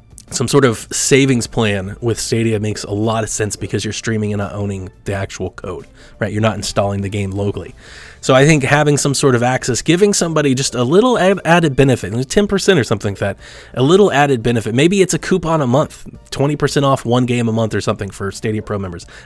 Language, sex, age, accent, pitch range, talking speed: English, male, 20-39, American, 110-140 Hz, 215 wpm